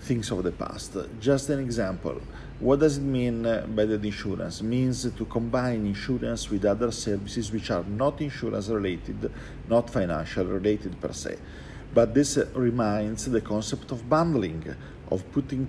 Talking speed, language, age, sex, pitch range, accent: 150 wpm, English, 50-69, male, 105-130 Hz, Italian